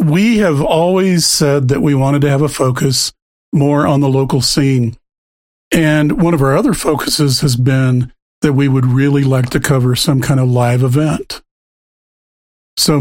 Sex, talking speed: male, 170 wpm